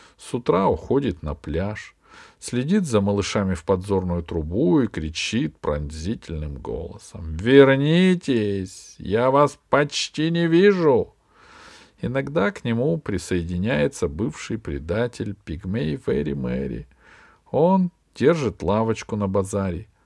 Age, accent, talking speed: 50-69, native, 105 wpm